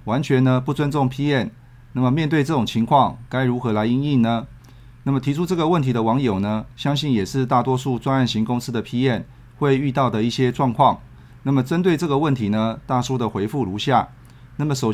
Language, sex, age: Chinese, male, 30-49